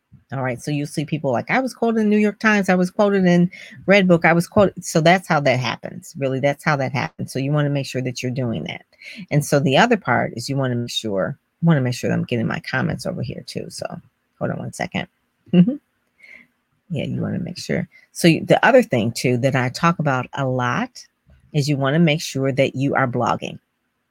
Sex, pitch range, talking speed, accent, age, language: female, 135-175 Hz, 250 wpm, American, 40-59, English